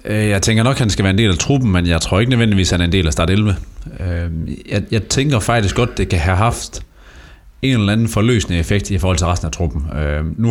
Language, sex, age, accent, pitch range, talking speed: Danish, male, 30-49, native, 90-110 Hz, 250 wpm